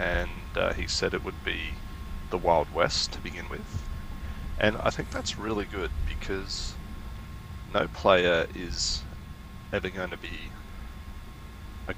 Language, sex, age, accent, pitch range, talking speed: English, male, 20-39, Australian, 70-95 Hz, 140 wpm